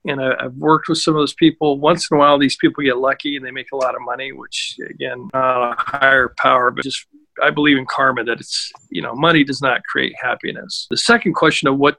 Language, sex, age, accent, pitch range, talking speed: English, male, 50-69, American, 135-165 Hz, 245 wpm